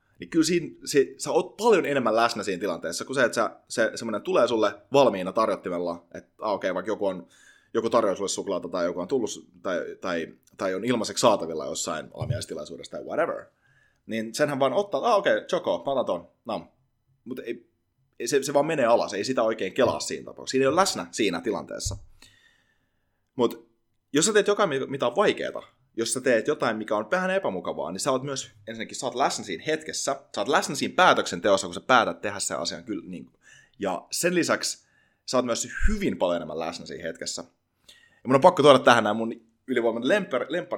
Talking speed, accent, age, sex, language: 195 wpm, native, 30-49, male, Finnish